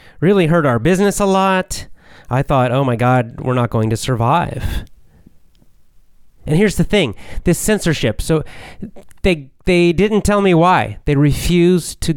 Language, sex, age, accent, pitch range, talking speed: English, male, 30-49, American, 115-145 Hz, 160 wpm